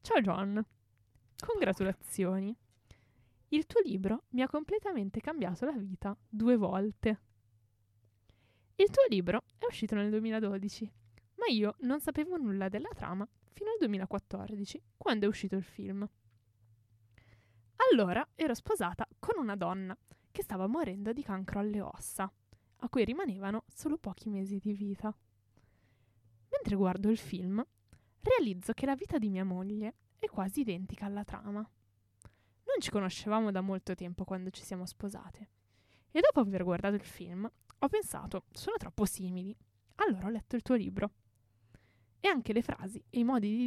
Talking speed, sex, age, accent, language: 150 wpm, female, 20-39, native, Italian